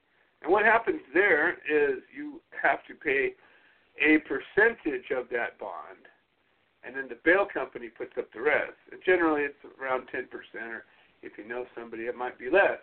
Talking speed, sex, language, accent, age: 175 wpm, male, English, American, 50-69